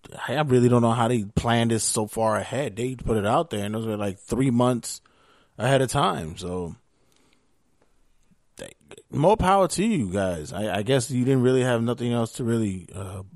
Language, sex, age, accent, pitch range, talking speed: English, male, 20-39, American, 100-120 Hz, 195 wpm